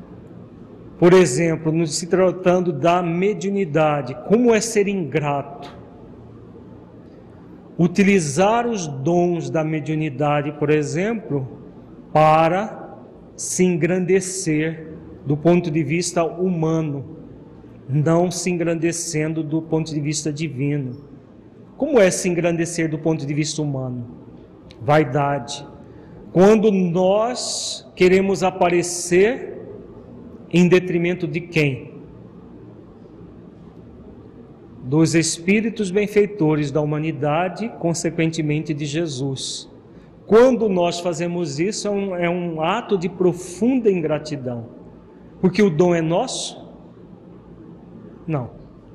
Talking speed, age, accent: 95 wpm, 40-59, Brazilian